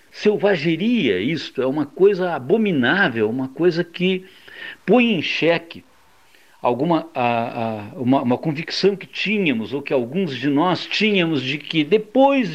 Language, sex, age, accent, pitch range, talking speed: Portuguese, male, 60-79, Brazilian, 140-195 Hz, 120 wpm